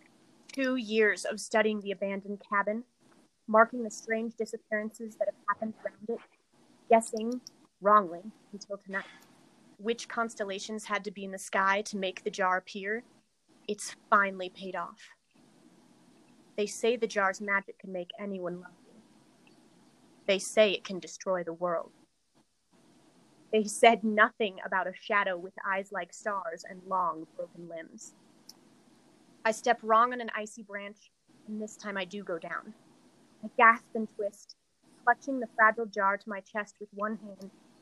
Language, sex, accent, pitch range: English, female, American, 195-230 Hz